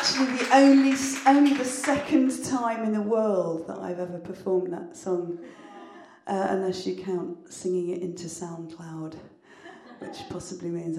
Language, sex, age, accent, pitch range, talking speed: English, female, 40-59, British, 170-215 Hz, 145 wpm